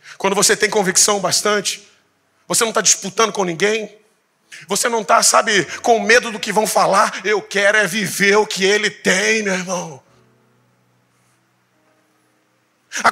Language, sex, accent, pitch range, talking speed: Portuguese, male, Brazilian, 190-260 Hz, 145 wpm